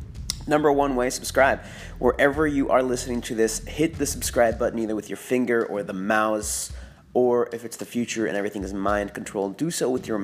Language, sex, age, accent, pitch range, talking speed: English, male, 30-49, American, 100-135 Hz, 200 wpm